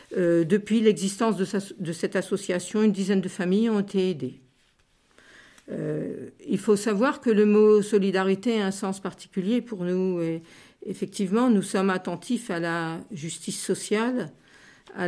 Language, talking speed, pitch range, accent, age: French, 145 wpm, 175-205 Hz, French, 50-69